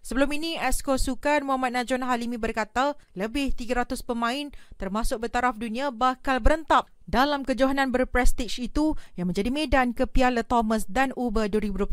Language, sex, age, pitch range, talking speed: Malay, female, 30-49, 240-290 Hz, 135 wpm